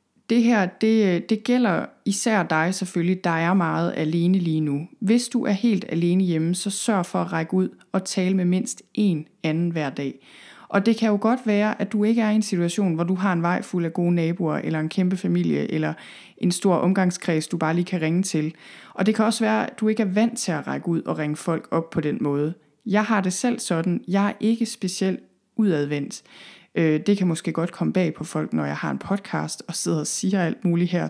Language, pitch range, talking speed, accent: Danish, 160-200 Hz, 235 wpm, native